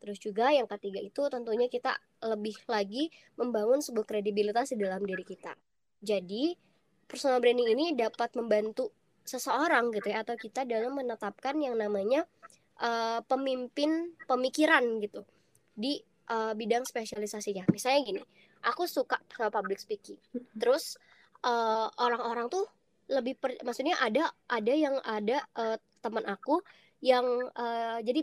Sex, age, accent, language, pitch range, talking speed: male, 20-39, native, Indonesian, 220-270 Hz, 130 wpm